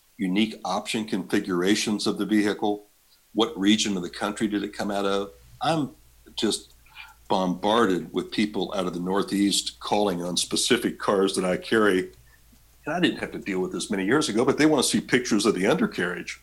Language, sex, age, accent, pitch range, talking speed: English, male, 60-79, American, 90-105 Hz, 190 wpm